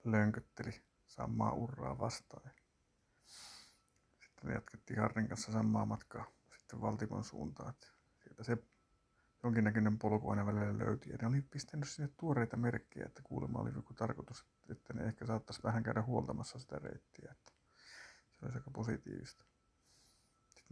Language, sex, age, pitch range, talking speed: Finnish, male, 50-69, 110-125 Hz, 135 wpm